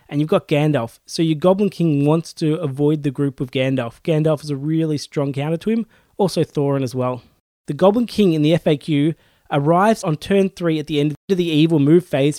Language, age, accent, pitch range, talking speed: English, 20-39, Australian, 145-180 Hz, 220 wpm